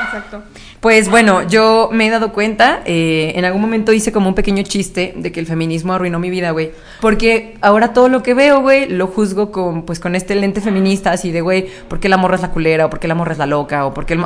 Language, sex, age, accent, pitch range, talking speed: Spanish, female, 20-39, Mexican, 160-210 Hz, 255 wpm